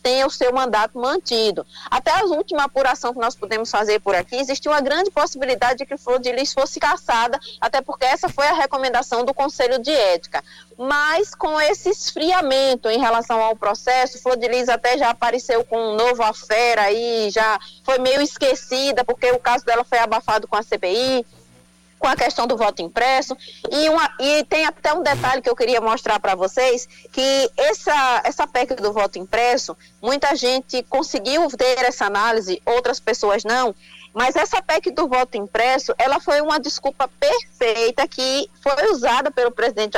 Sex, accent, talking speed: female, Brazilian, 175 wpm